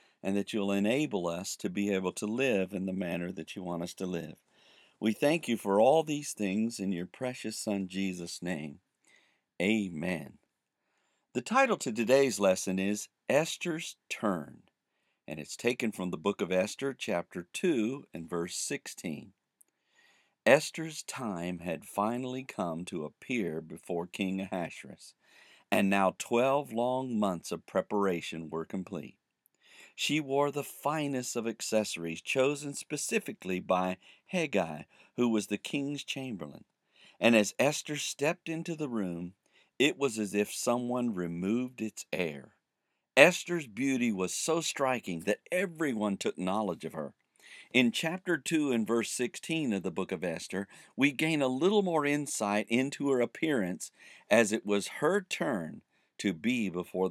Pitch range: 95-140 Hz